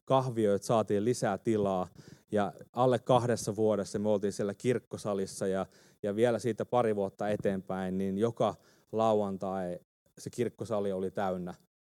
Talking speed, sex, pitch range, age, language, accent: 125 wpm, male, 100-120 Hz, 30-49, Finnish, native